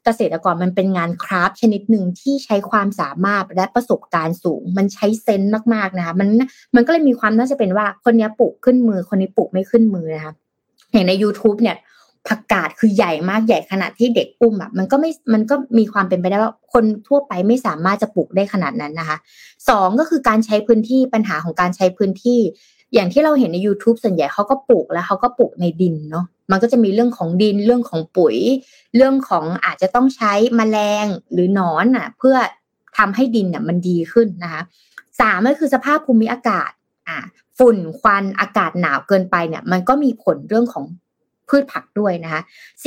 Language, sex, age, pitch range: Thai, female, 20-39, 185-235 Hz